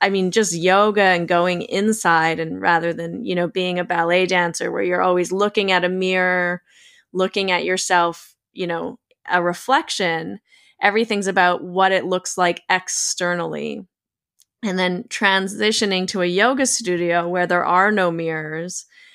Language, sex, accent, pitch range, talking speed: English, female, American, 170-205 Hz, 155 wpm